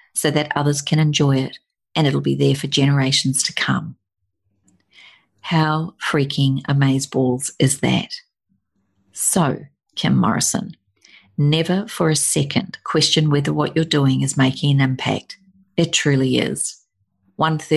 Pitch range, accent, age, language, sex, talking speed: 130-150 Hz, Australian, 50-69, English, female, 130 wpm